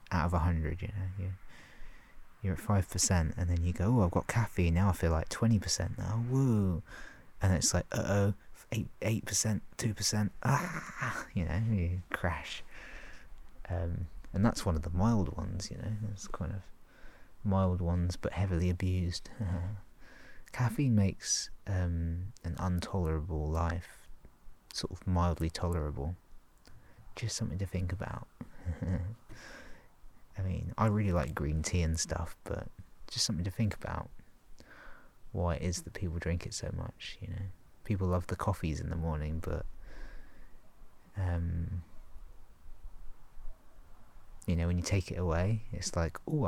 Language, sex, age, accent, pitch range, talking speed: English, male, 30-49, British, 85-100 Hz, 150 wpm